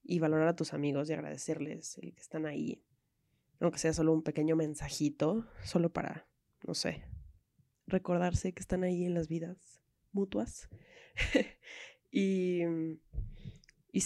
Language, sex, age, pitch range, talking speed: Spanish, female, 20-39, 150-170 Hz, 135 wpm